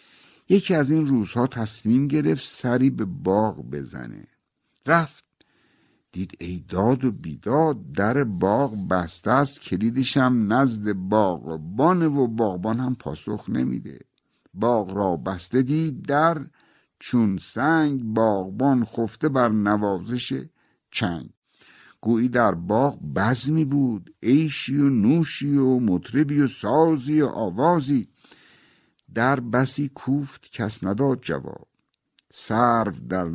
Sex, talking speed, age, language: male, 110 wpm, 60-79, Persian